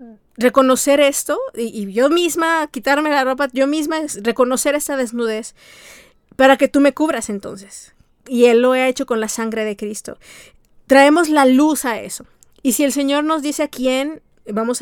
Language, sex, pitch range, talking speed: Spanish, female, 245-285 Hz, 180 wpm